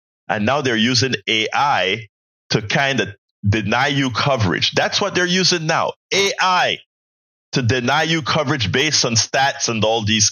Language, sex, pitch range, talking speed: English, male, 105-145 Hz, 155 wpm